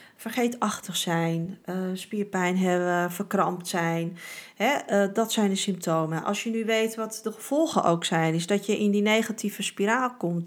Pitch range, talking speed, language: 170-215 Hz, 155 wpm, Dutch